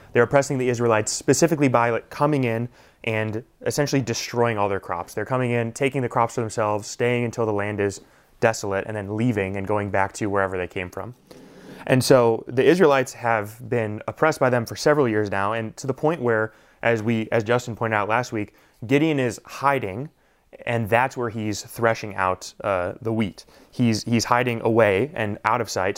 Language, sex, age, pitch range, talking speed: English, male, 20-39, 105-125 Hz, 195 wpm